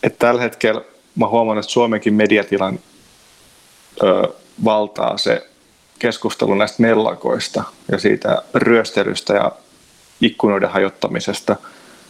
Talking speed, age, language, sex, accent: 100 wpm, 30-49, Finnish, male, native